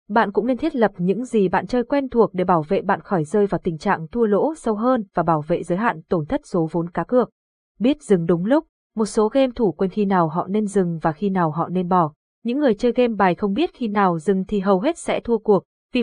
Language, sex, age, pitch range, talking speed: Vietnamese, female, 20-39, 185-235 Hz, 270 wpm